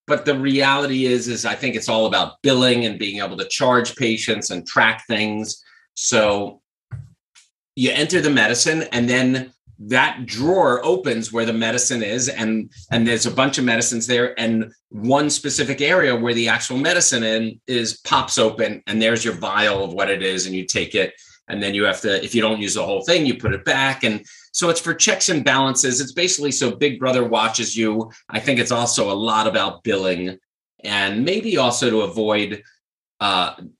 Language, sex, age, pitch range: English, male, 40-59, 110-145 Hz